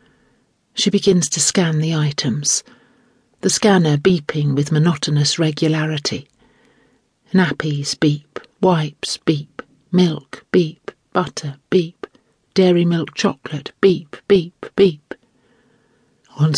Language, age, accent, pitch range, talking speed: English, 50-69, British, 155-205 Hz, 100 wpm